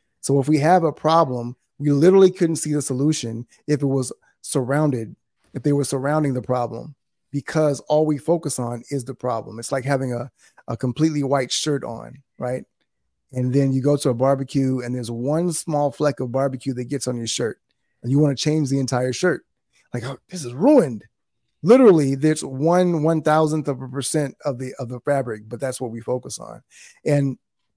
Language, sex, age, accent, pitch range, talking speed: English, male, 20-39, American, 125-150 Hz, 195 wpm